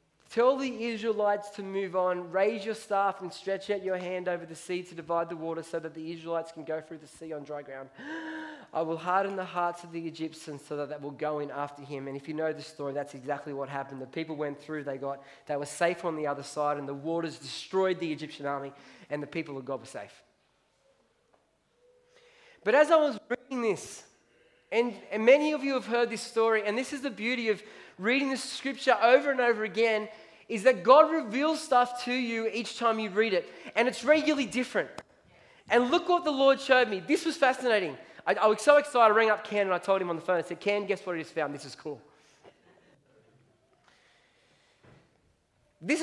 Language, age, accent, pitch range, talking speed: English, 20-39, Australian, 160-245 Hz, 220 wpm